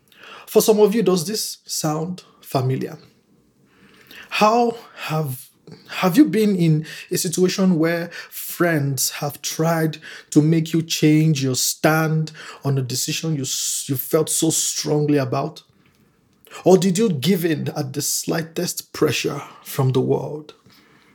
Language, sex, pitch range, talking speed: English, male, 140-165 Hz, 135 wpm